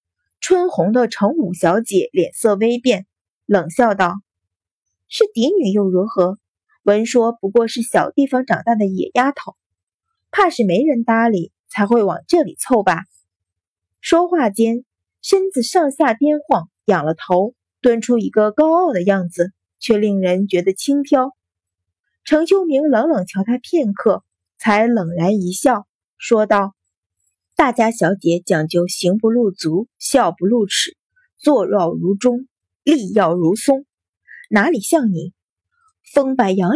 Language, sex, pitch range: Chinese, female, 180-260 Hz